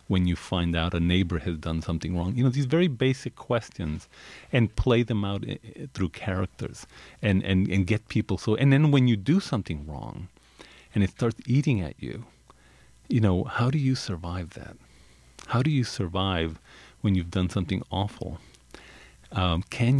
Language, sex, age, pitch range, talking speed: English, male, 40-59, 90-130 Hz, 175 wpm